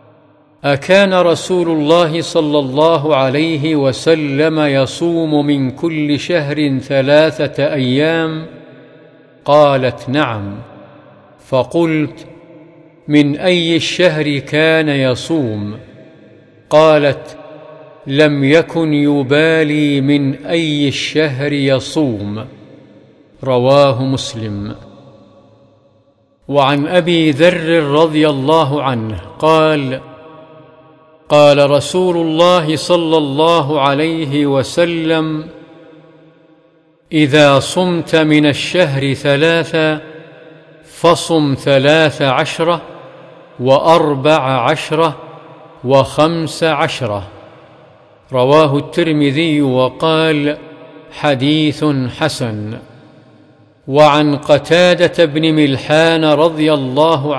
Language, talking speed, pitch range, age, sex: Arabic, 70 wpm, 140-160 Hz, 50-69, male